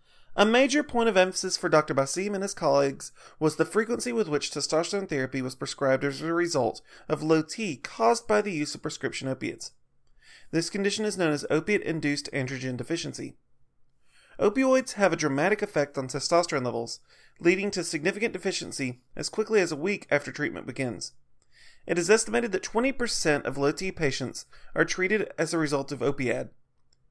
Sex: male